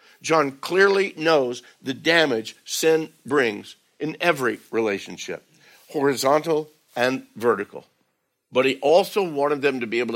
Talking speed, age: 125 wpm, 60-79